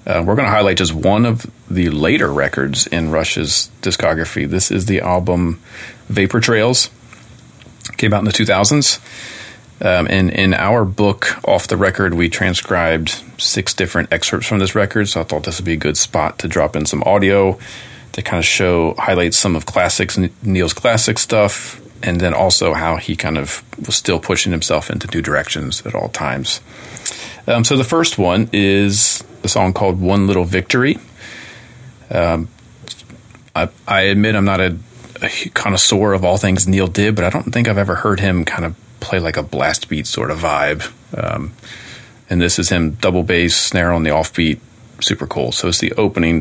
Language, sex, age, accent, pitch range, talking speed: English, male, 40-59, American, 85-110 Hz, 185 wpm